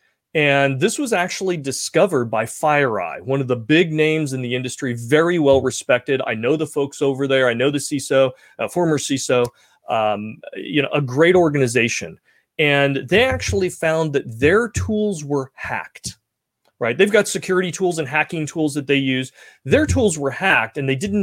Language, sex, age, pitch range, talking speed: English, male, 30-49, 135-170 Hz, 175 wpm